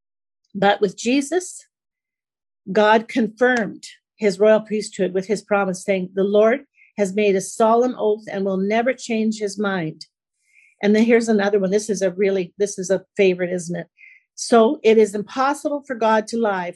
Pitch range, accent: 195-230 Hz, American